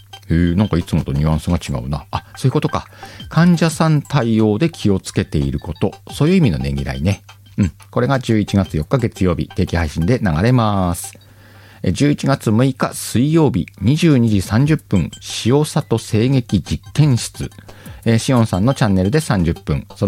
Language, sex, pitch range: Japanese, male, 80-110 Hz